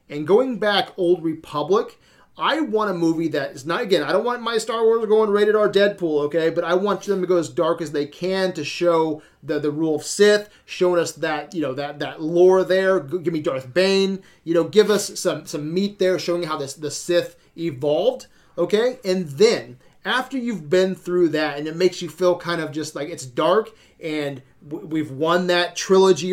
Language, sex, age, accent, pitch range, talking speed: English, male, 30-49, American, 160-195 Hz, 215 wpm